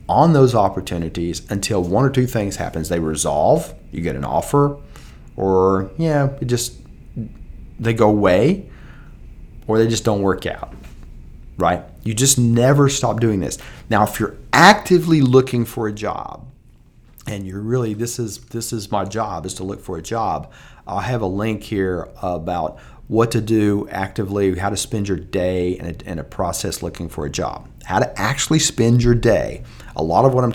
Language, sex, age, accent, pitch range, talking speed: English, male, 40-59, American, 90-120 Hz, 185 wpm